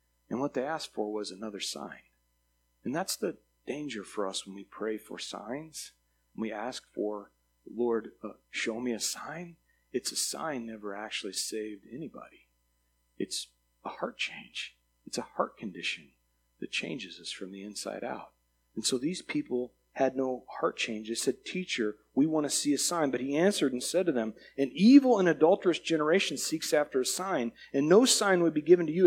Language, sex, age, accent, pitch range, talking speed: English, male, 40-59, American, 105-155 Hz, 190 wpm